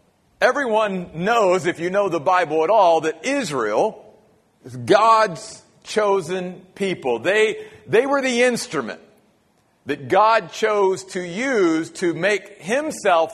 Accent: American